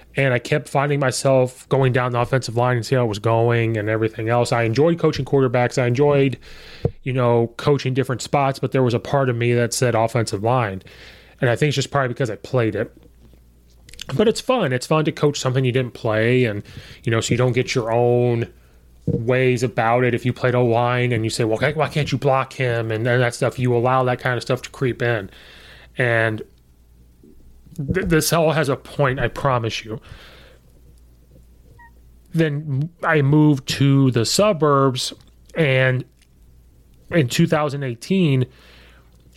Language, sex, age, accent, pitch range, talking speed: English, male, 30-49, American, 110-135 Hz, 180 wpm